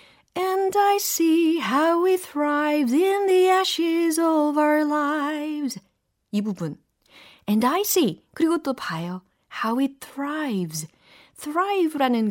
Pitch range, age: 185-295 Hz, 30-49